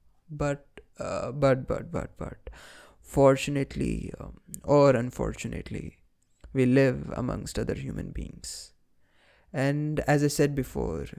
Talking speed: 115 wpm